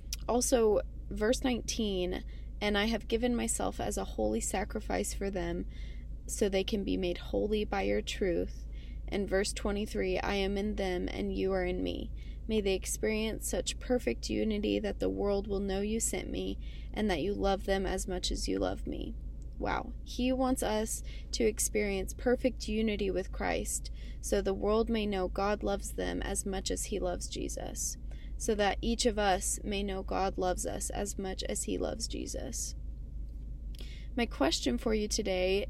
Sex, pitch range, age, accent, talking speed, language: female, 180-220 Hz, 20-39, American, 175 wpm, English